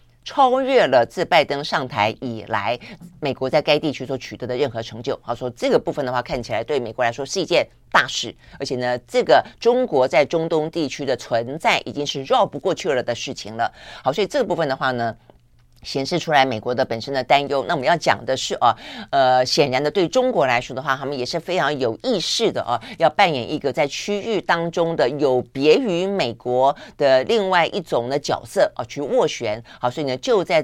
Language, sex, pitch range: Chinese, female, 125-165 Hz